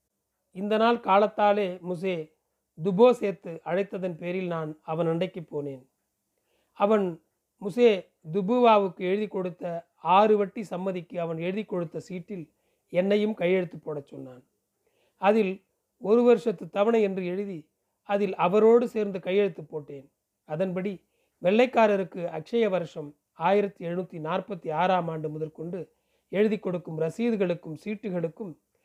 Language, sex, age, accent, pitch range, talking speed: Tamil, male, 40-59, native, 170-210 Hz, 110 wpm